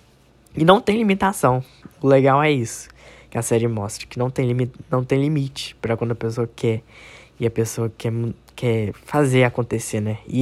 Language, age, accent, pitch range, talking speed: Portuguese, 10-29, Brazilian, 115-140 Hz, 180 wpm